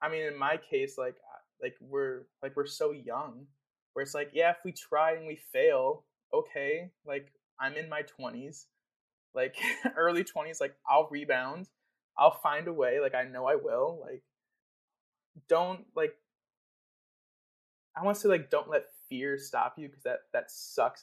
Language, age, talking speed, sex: English, 20-39, 170 wpm, male